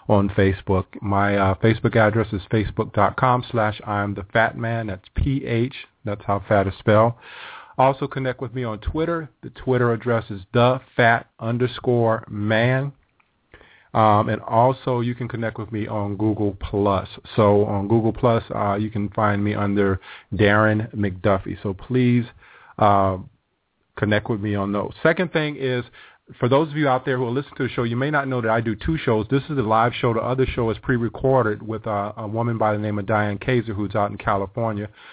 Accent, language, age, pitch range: American, English, 40-59, 105-125 Hz